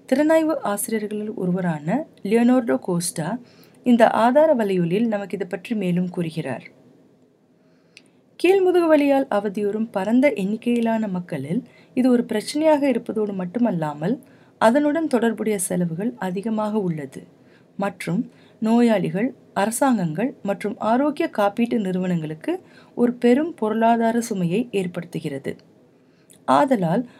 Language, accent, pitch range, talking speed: Tamil, native, 200-255 Hz, 90 wpm